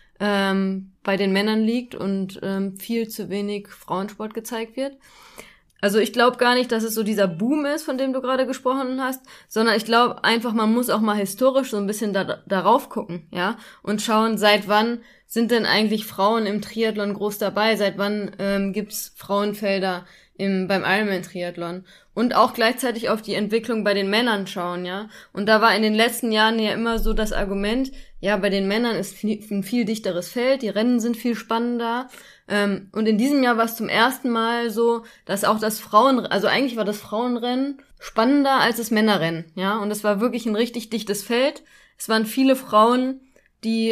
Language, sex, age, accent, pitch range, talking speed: German, female, 20-39, German, 205-240 Hz, 190 wpm